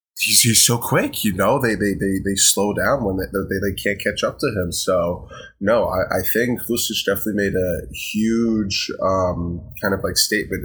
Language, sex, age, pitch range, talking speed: English, male, 20-39, 90-105 Hz, 205 wpm